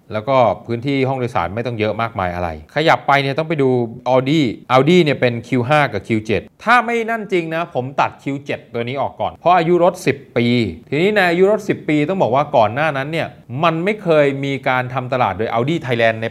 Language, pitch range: Thai, 110-150 Hz